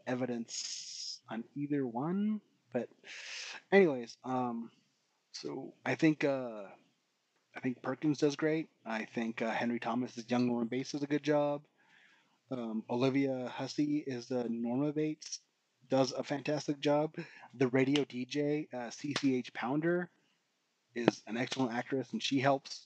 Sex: male